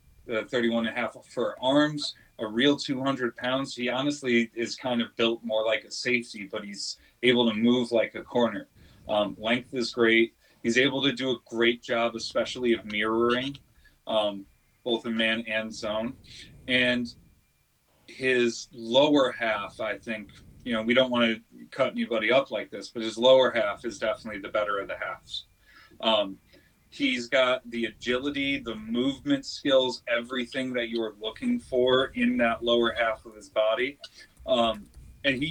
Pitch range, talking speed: 110-130 Hz, 170 wpm